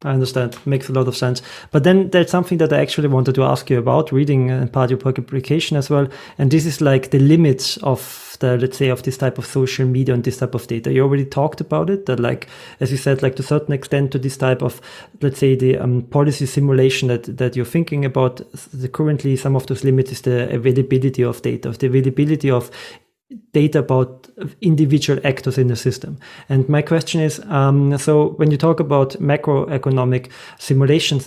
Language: English